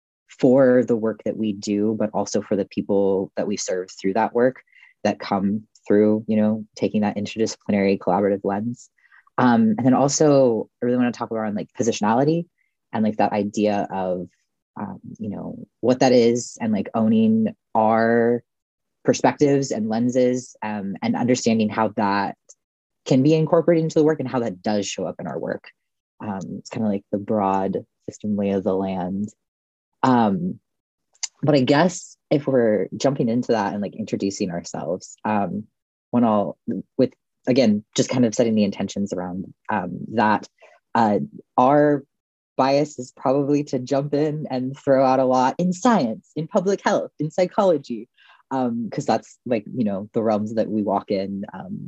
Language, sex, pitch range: English, female, 105-140 Hz